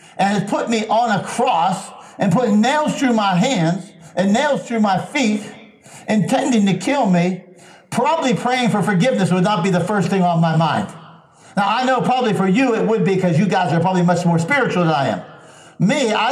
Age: 60-79